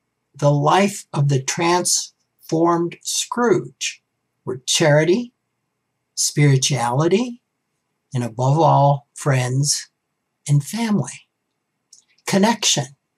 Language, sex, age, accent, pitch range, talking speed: English, male, 60-79, American, 135-175 Hz, 75 wpm